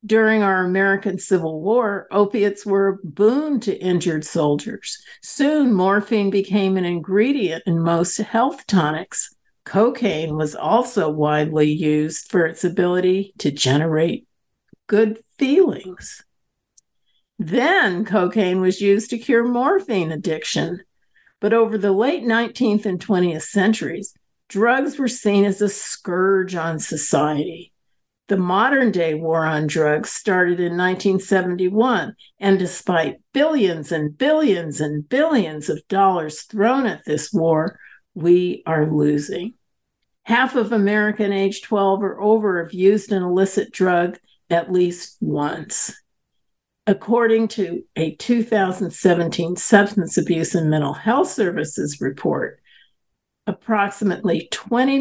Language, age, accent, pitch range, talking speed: English, 50-69, American, 175-220 Hz, 120 wpm